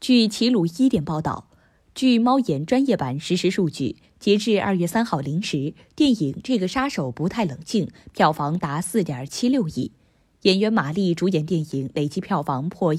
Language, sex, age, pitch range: Chinese, female, 20-39, 155-215 Hz